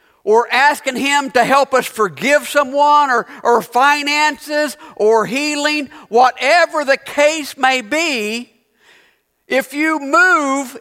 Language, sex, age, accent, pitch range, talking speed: English, male, 50-69, American, 270-330 Hz, 115 wpm